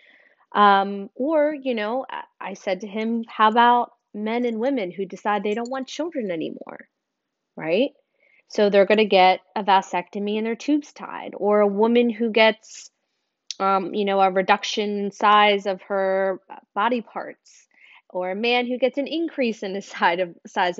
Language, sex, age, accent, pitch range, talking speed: English, female, 20-39, American, 195-260 Hz, 165 wpm